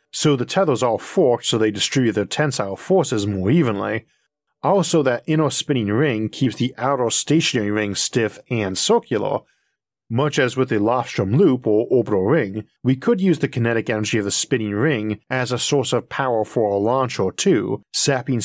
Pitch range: 110-145 Hz